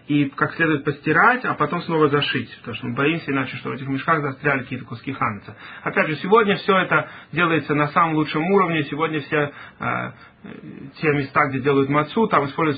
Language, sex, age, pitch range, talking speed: Russian, male, 30-49, 130-150 Hz, 195 wpm